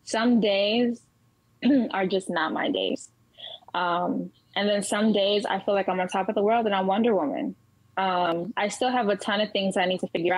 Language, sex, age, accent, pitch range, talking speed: English, female, 20-39, American, 180-215 Hz, 215 wpm